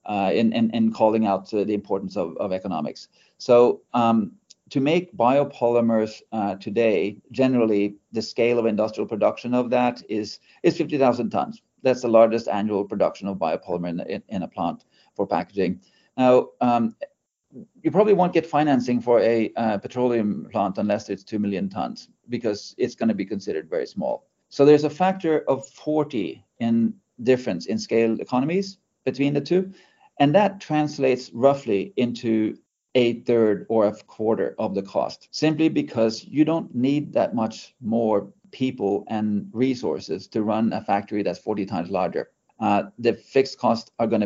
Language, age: English, 40-59